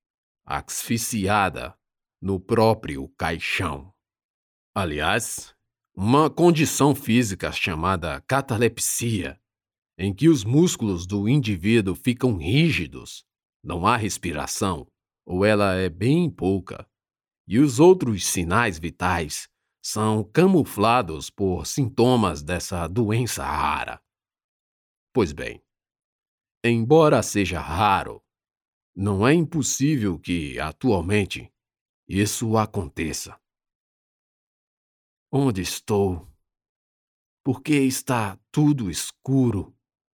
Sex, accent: male, Brazilian